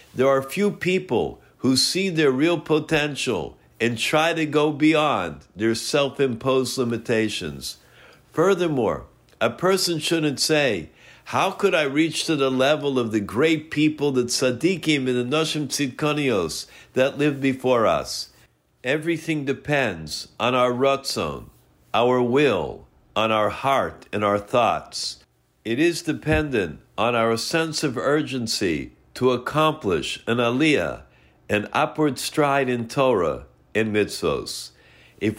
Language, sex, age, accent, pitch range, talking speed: English, male, 60-79, American, 110-150 Hz, 130 wpm